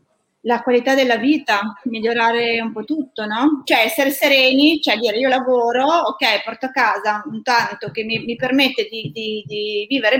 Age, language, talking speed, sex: 30-49, Italian, 175 wpm, female